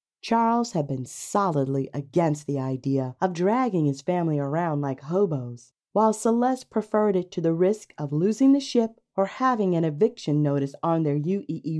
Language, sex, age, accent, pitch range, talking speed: English, female, 40-59, American, 145-235 Hz, 170 wpm